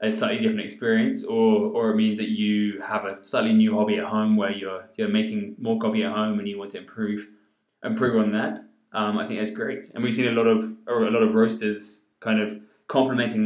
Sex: male